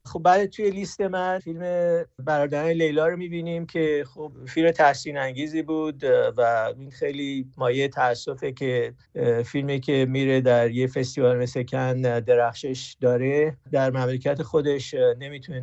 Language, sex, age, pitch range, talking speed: Persian, male, 50-69, 125-155 Hz, 140 wpm